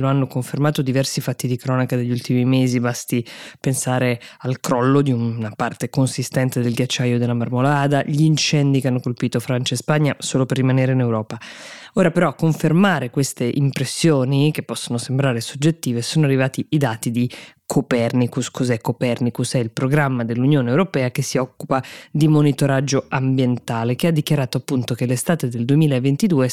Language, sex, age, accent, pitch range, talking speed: Italian, female, 20-39, native, 125-150 Hz, 165 wpm